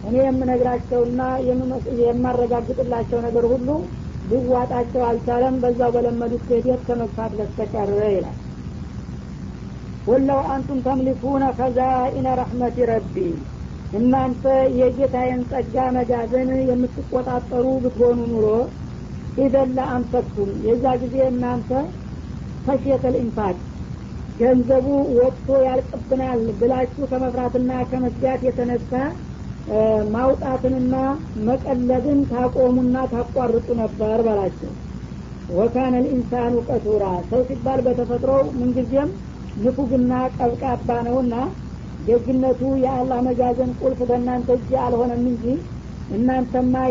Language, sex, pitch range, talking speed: Amharic, female, 245-260 Hz, 85 wpm